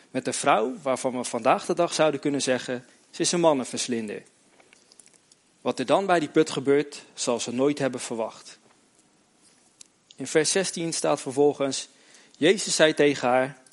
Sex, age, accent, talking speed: male, 40-59, Dutch, 160 wpm